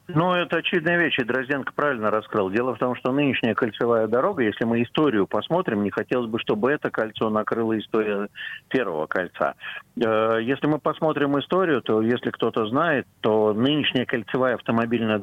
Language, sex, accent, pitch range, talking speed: Russian, male, native, 105-125 Hz, 160 wpm